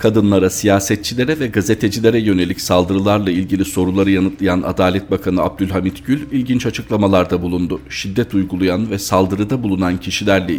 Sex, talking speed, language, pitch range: male, 125 wpm, Turkish, 95-115 Hz